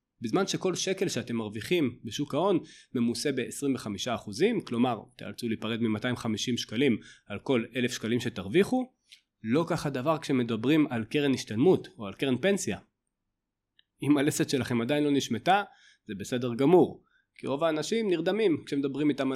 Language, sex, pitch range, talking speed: Hebrew, male, 115-155 Hz, 140 wpm